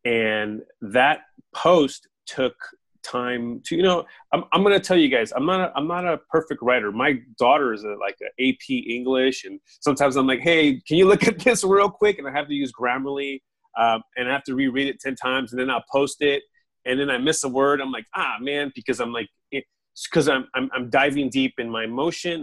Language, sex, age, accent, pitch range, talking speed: English, male, 30-49, American, 120-155 Hz, 225 wpm